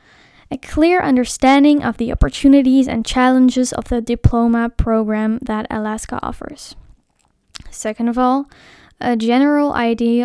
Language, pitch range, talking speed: English, 230-265 Hz, 125 wpm